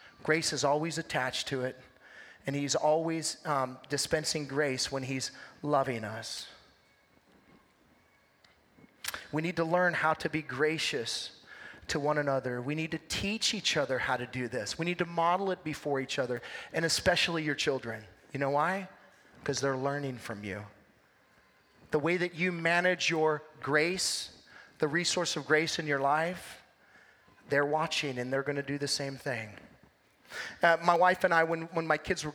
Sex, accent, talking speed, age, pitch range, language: male, American, 170 wpm, 30-49, 145-175 Hz, English